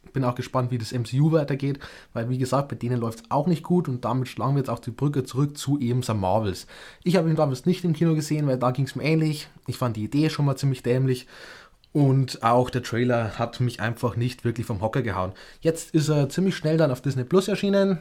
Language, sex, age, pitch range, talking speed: German, male, 20-39, 125-165 Hz, 245 wpm